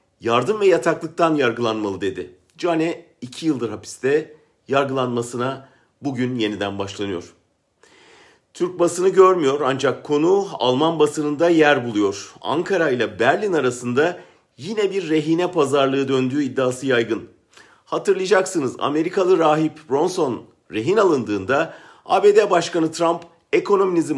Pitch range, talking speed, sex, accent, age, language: 130-185 Hz, 105 wpm, male, Turkish, 50-69, German